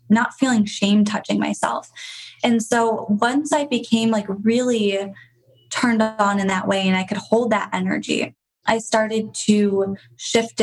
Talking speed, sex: 155 wpm, female